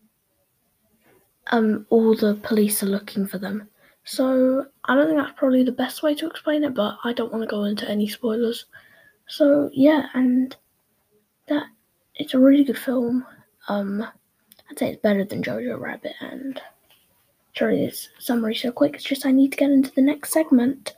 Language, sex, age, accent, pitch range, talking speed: English, female, 10-29, British, 220-280 Hz, 175 wpm